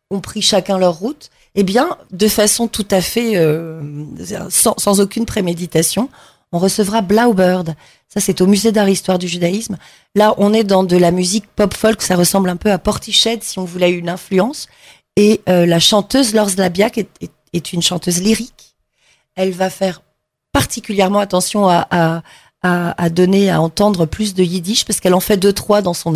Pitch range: 170-205 Hz